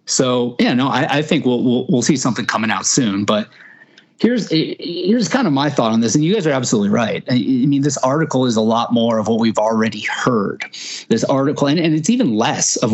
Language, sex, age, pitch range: English, male, 30-49, 110-140 Hz